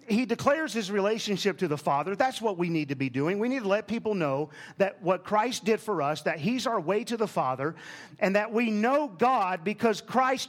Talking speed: 230 wpm